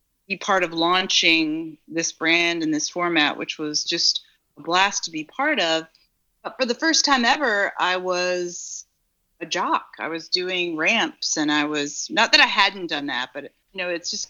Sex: female